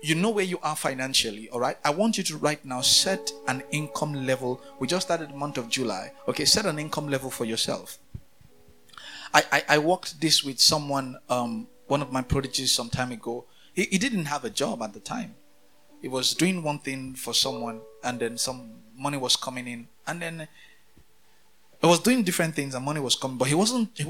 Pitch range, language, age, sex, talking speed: 130-170 Hz, English, 30-49, male, 205 wpm